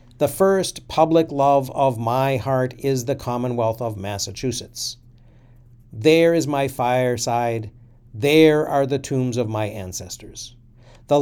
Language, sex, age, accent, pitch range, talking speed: English, male, 50-69, American, 115-140 Hz, 130 wpm